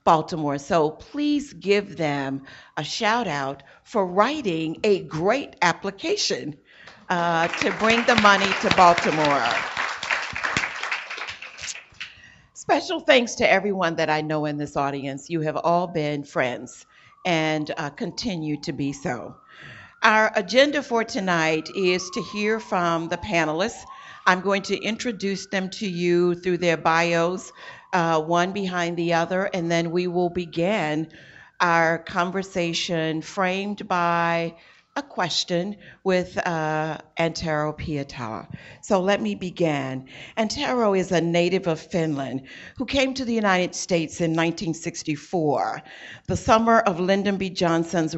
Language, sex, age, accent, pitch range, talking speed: English, female, 50-69, American, 160-200 Hz, 130 wpm